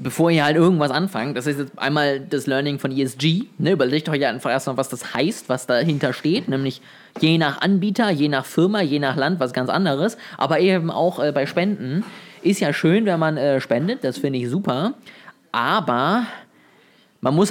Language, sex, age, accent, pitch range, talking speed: German, male, 20-39, German, 140-185 Hz, 195 wpm